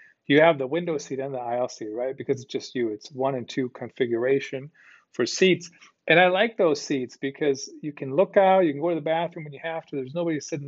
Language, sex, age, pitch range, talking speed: English, male, 40-59, 130-165 Hz, 245 wpm